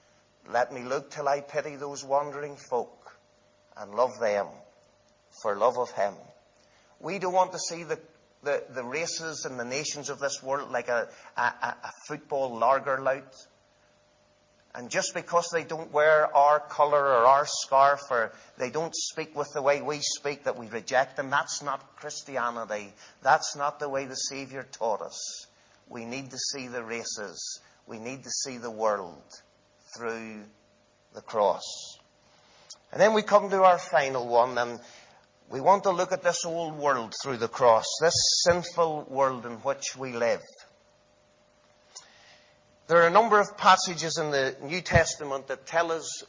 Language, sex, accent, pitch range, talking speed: English, male, British, 125-165 Hz, 165 wpm